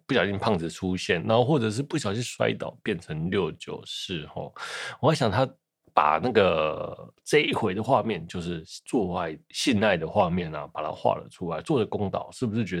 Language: Chinese